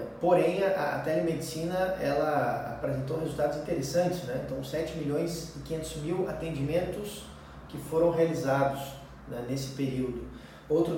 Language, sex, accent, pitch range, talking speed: Portuguese, male, Brazilian, 135-165 Hz, 120 wpm